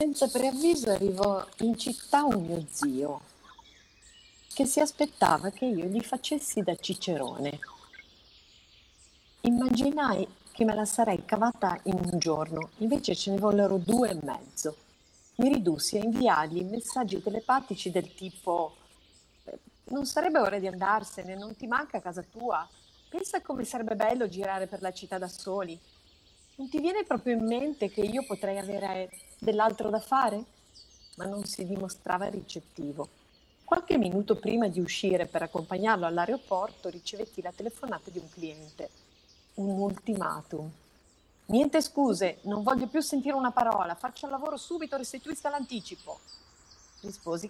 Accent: native